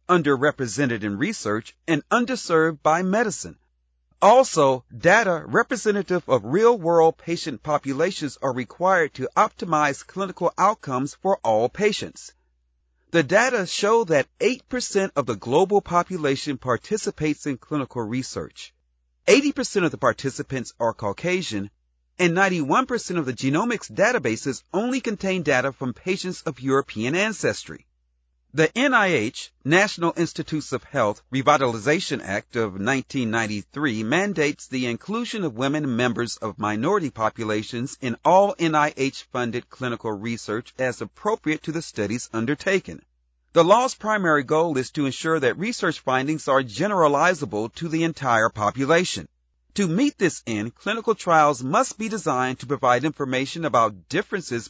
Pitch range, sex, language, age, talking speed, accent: 120-180 Hz, male, English, 40-59, 125 wpm, American